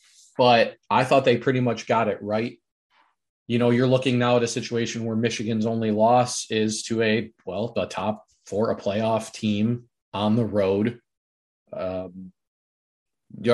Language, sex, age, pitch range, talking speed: English, male, 20-39, 100-120 Hz, 160 wpm